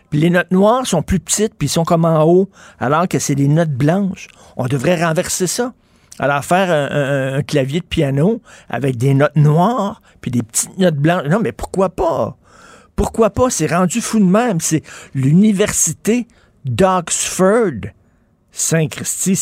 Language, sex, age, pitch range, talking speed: French, male, 50-69, 120-175 Hz, 165 wpm